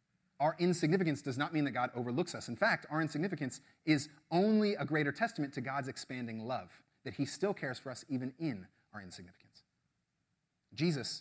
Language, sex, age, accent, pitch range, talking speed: English, male, 30-49, American, 110-145 Hz, 175 wpm